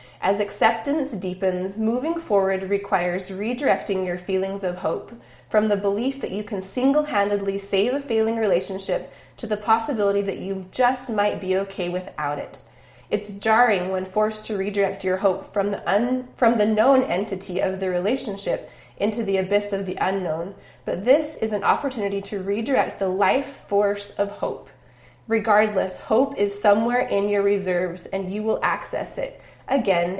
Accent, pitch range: American, 190-220 Hz